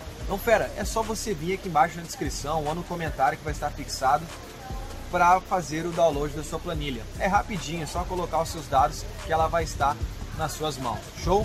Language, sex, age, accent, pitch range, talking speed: Portuguese, male, 20-39, Brazilian, 150-215 Hz, 210 wpm